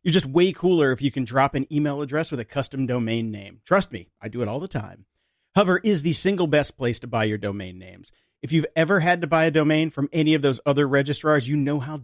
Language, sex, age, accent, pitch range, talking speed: English, male, 40-59, American, 120-170 Hz, 260 wpm